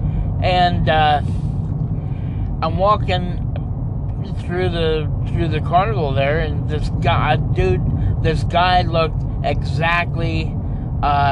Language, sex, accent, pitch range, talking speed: English, male, American, 120-160 Hz, 100 wpm